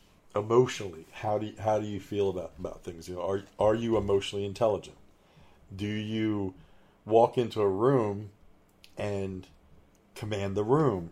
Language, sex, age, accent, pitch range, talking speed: English, male, 40-59, American, 95-115 Hz, 150 wpm